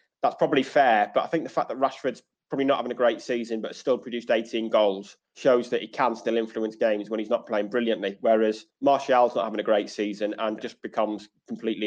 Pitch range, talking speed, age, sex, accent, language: 105-120 Hz, 220 wpm, 20-39, male, British, English